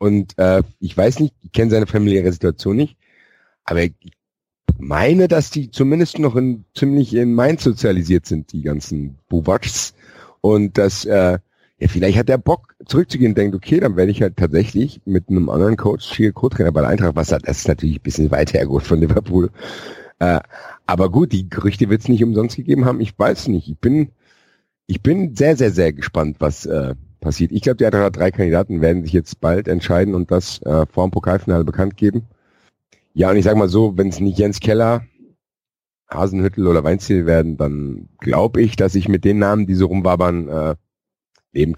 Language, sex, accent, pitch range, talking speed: German, male, German, 80-105 Hz, 190 wpm